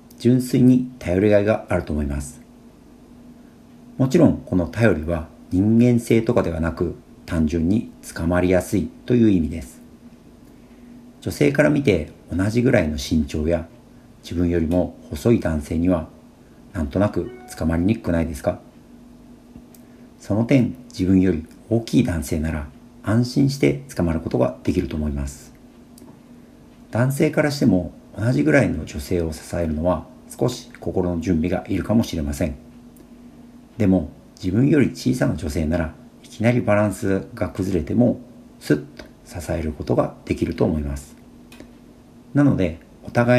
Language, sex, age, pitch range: Japanese, male, 50-69, 80-120 Hz